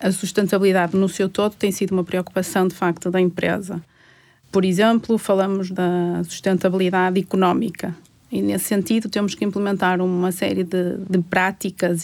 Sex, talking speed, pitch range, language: female, 150 wpm, 180-195 Hz, Portuguese